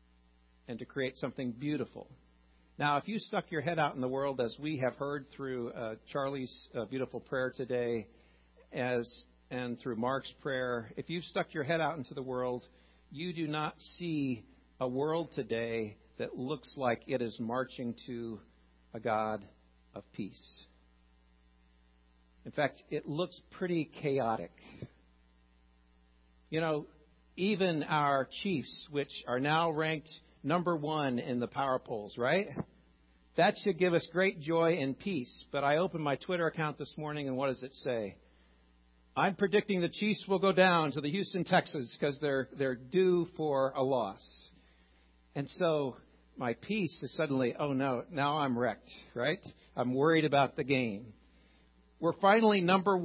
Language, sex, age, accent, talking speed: English, male, 50-69, American, 160 wpm